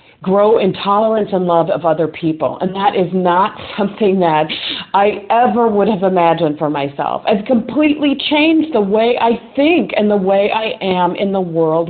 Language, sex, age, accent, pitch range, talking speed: English, female, 40-59, American, 170-225 Hz, 180 wpm